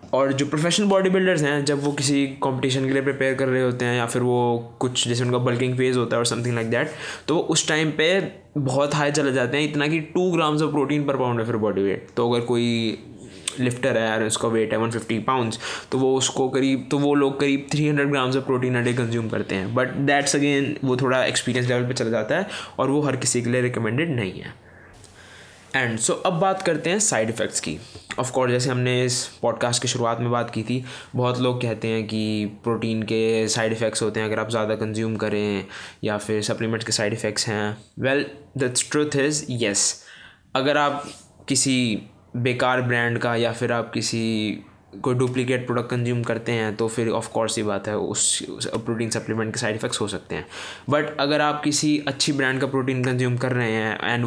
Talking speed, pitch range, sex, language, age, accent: 215 wpm, 115-145 Hz, male, Hindi, 20-39, native